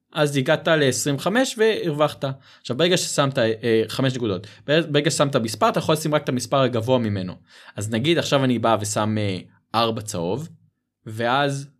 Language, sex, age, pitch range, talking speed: Hebrew, male, 20-39, 115-155 Hz, 160 wpm